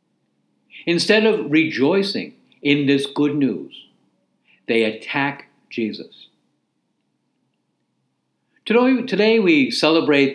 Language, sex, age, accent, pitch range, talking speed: English, male, 60-79, American, 130-200 Hz, 80 wpm